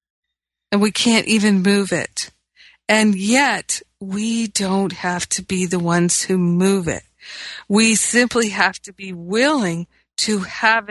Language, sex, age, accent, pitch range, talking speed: English, female, 50-69, American, 185-220 Hz, 145 wpm